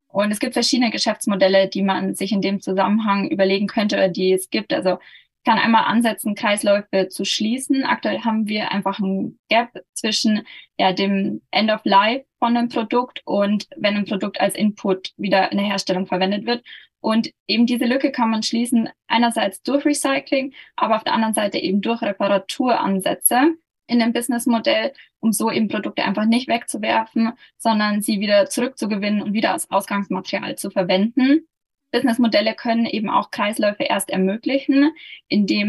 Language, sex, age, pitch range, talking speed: German, female, 20-39, 200-245 Hz, 160 wpm